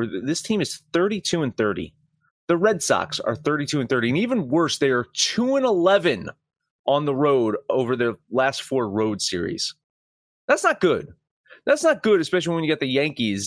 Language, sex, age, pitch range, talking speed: English, male, 30-49, 130-190 Hz, 185 wpm